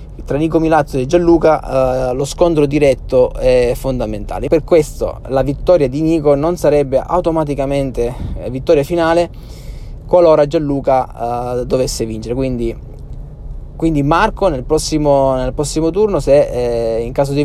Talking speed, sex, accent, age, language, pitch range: 140 wpm, male, native, 20-39, Italian, 125-160 Hz